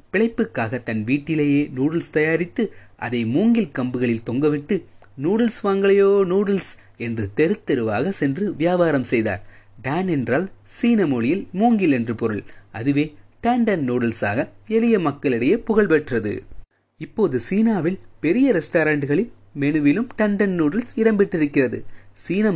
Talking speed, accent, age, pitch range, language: 95 wpm, native, 30-49, 125-200 Hz, Tamil